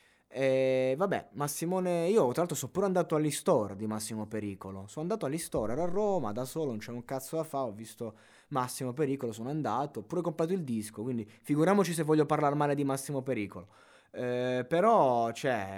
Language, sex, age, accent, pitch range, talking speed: Italian, male, 20-39, native, 110-135 Hz, 190 wpm